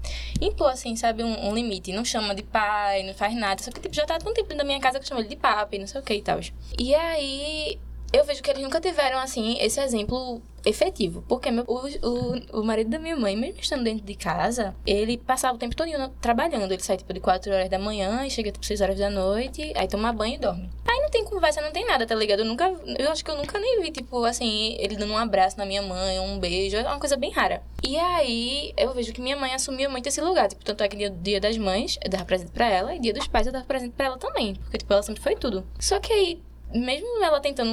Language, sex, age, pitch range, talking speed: Portuguese, female, 10-29, 195-270 Hz, 265 wpm